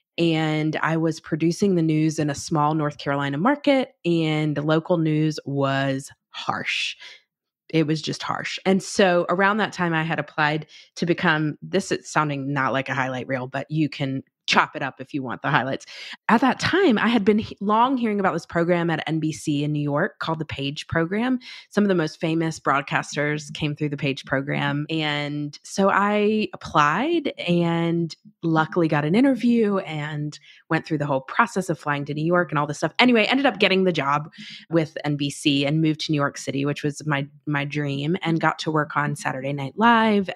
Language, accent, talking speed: English, American, 200 wpm